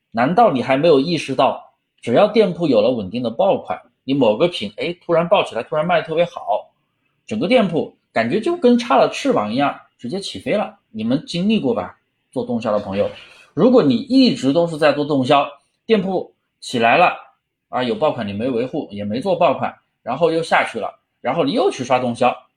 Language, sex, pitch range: Chinese, male, 135-220 Hz